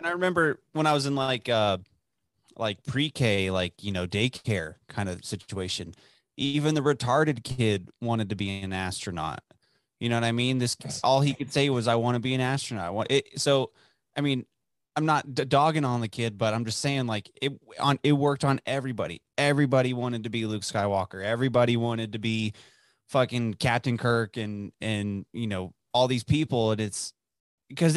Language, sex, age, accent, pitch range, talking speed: English, male, 20-39, American, 110-140 Hz, 185 wpm